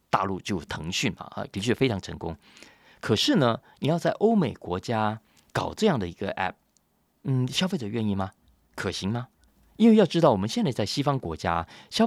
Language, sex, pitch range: Chinese, male, 90-145 Hz